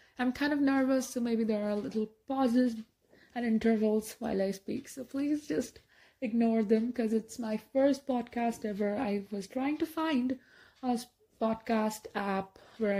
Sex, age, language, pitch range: female, 20-39, English, 205-255 Hz